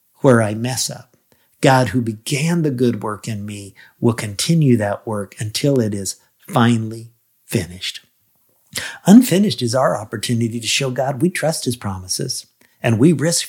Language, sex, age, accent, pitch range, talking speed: English, male, 50-69, American, 105-130 Hz, 155 wpm